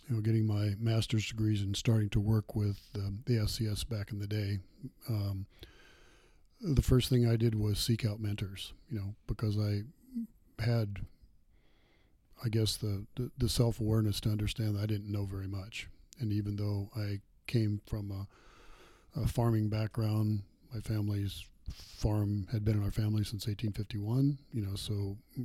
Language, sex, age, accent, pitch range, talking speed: English, male, 50-69, American, 100-115 Hz, 165 wpm